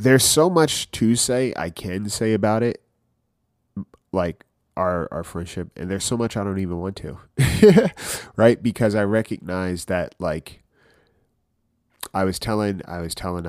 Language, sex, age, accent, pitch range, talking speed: English, male, 30-49, American, 80-105 Hz, 155 wpm